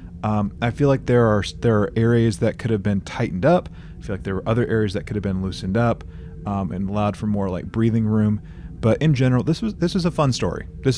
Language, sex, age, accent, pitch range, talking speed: English, male, 30-49, American, 85-115 Hz, 255 wpm